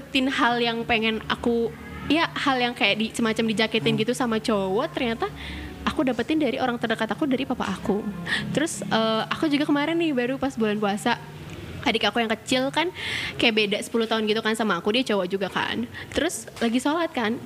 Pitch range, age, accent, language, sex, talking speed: 210-265 Hz, 20-39, native, Indonesian, female, 190 wpm